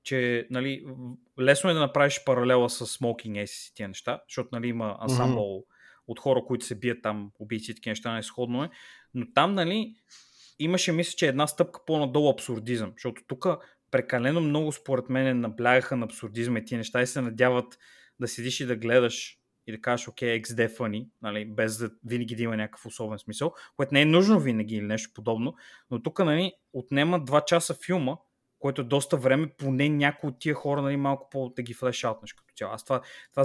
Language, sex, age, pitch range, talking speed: Bulgarian, male, 20-39, 120-150 Hz, 185 wpm